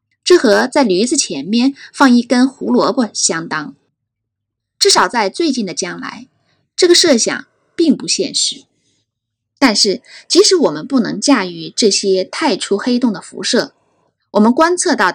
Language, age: Chinese, 20-39